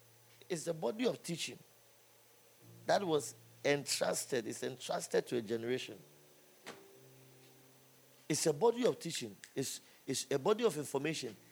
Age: 50-69